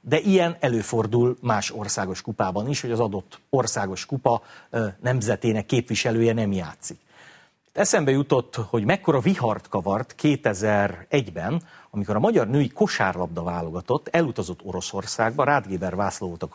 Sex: male